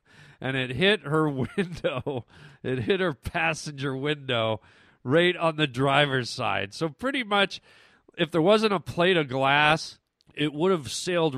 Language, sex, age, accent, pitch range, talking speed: English, male, 40-59, American, 125-165 Hz, 155 wpm